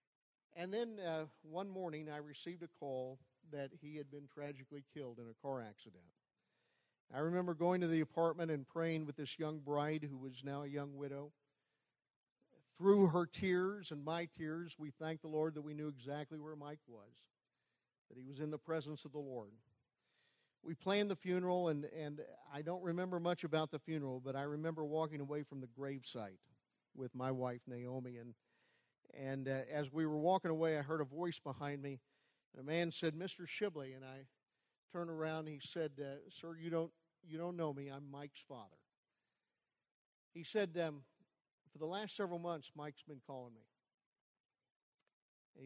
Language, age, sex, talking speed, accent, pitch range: English, 50-69, male, 185 wpm, American, 140-170 Hz